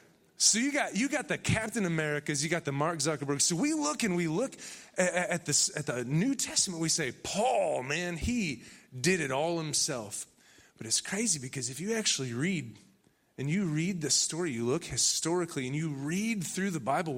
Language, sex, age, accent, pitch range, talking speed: English, male, 30-49, American, 140-190 Hz, 200 wpm